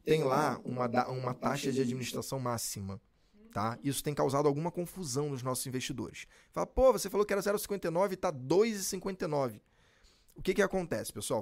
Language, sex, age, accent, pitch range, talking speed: Portuguese, male, 20-39, Brazilian, 125-175 Hz, 180 wpm